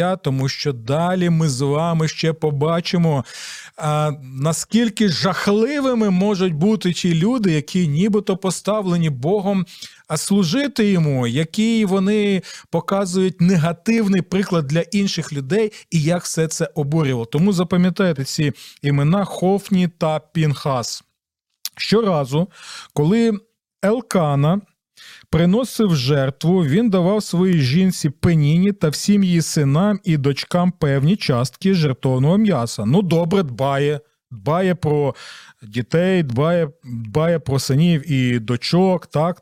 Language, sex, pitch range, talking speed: Ukrainian, male, 150-200 Hz, 115 wpm